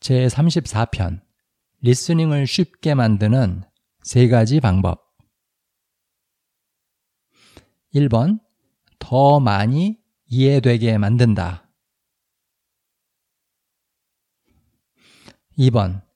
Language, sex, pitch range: Korean, male, 105-145 Hz